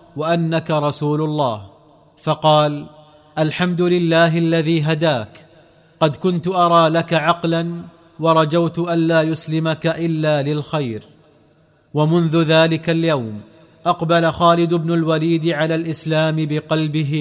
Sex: male